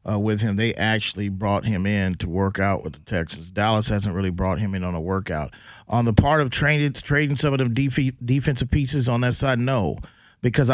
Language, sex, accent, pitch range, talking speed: English, male, American, 110-130 Hz, 220 wpm